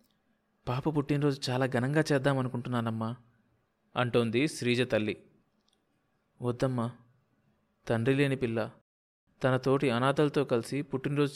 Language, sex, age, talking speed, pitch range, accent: Telugu, male, 20-39, 80 wpm, 115-140 Hz, native